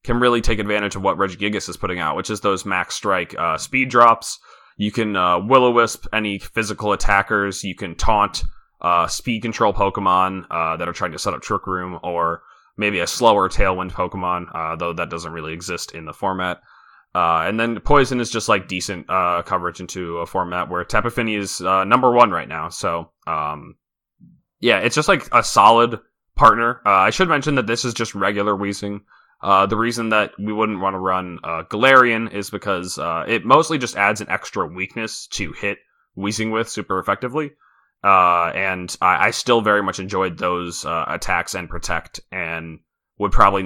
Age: 20-39